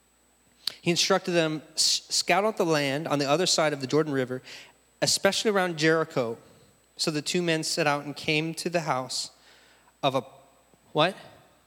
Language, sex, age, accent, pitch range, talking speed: English, male, 30-49, American, 125-155 Hz, 165 wpm